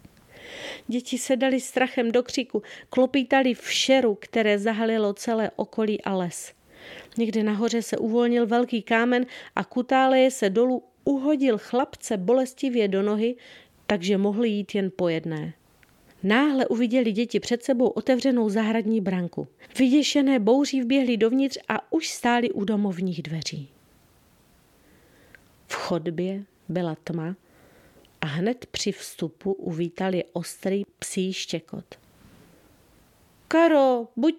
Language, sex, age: Czech, female, 40-59